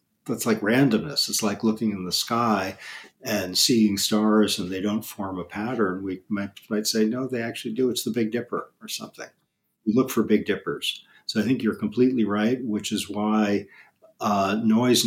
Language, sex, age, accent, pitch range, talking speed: English, male, 50-69, American, 100-115 Hz, 190 wpm